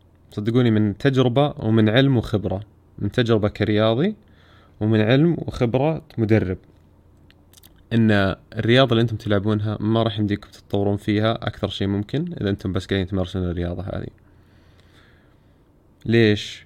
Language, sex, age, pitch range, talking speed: Arabic, male, 20-39, 95-115 Hz, 120 wpm